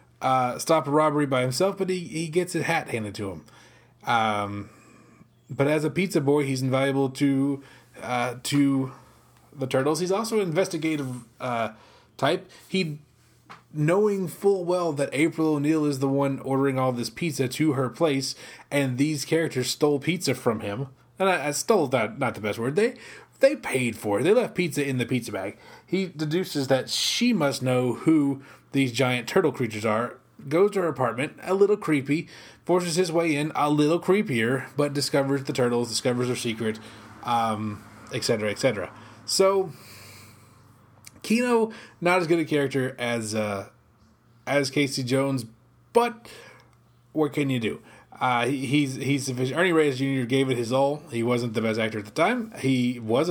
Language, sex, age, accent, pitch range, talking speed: English, male, 20-39, American, 120-155 Hz, 170 wpm